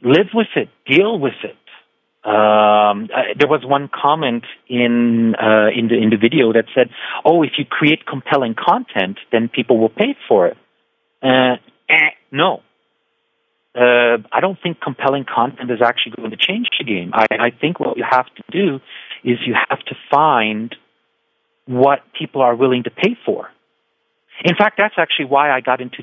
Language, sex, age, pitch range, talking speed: English, male, 40-59, 125-185 Hz, 175 wpm